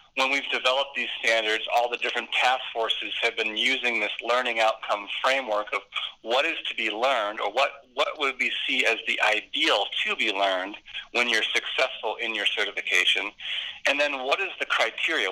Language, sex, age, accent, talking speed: English, male, 40-59, American, 185 wpm